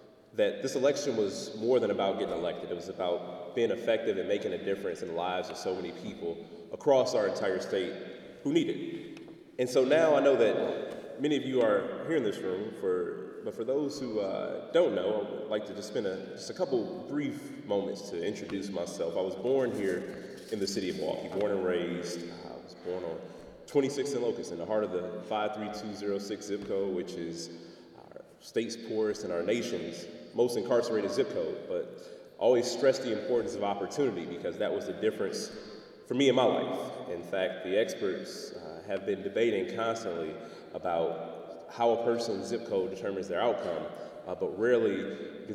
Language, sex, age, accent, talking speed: English, male, 30-49, American, 195 wpm